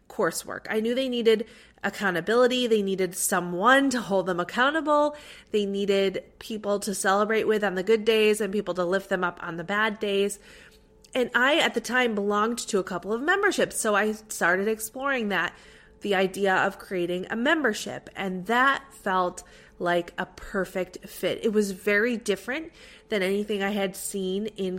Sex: female